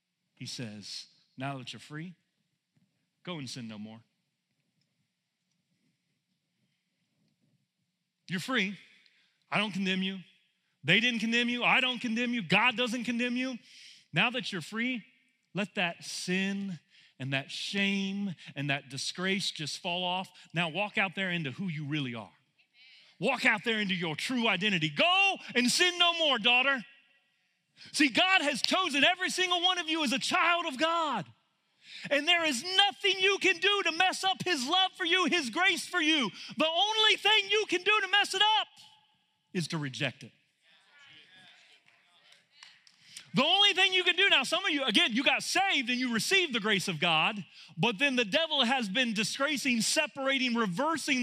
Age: 40-59